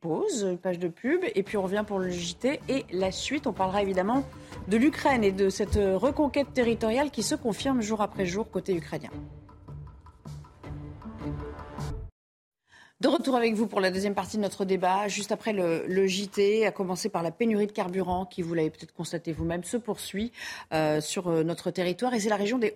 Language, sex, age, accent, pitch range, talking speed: French, female, 40-59, French, 185-245 Hz, 190 wpm